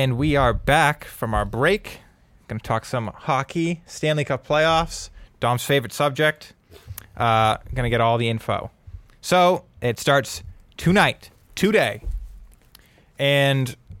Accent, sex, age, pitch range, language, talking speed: American, male, 20-39, 110-150 Hz, English, 130 wpm